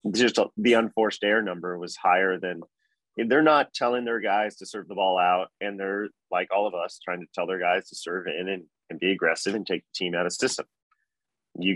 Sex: male